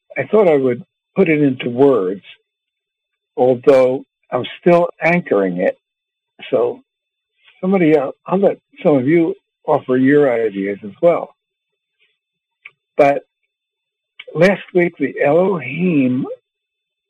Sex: male